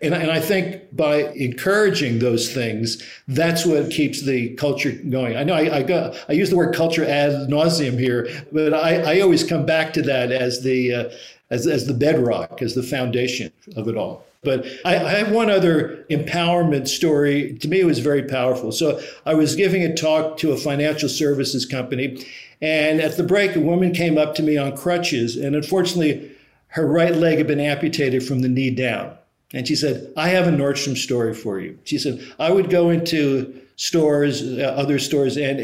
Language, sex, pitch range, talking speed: English, male, 130-165 Hz, 190 wpm